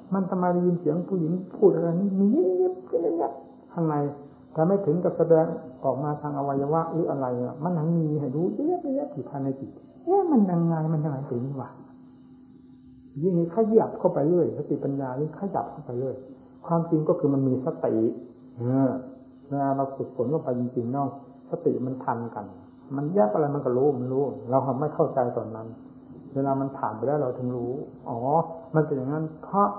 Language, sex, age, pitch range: English, male, 60-79, 130-165 Hz